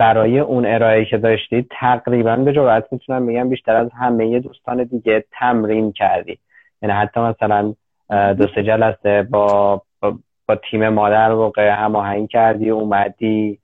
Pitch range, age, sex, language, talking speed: 105-120 Hz, 20-39, male, Persian, 135 wpm